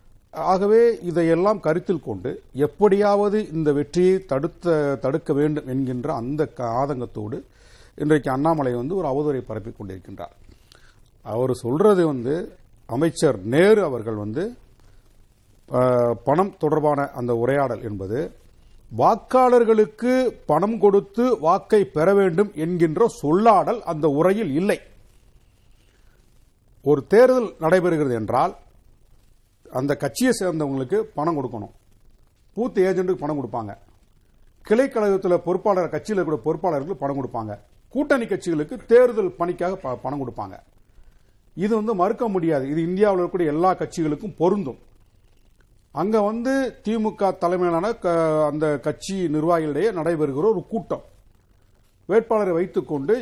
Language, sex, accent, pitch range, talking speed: Tamil, male, native, 125-195 Hz, 100 wpm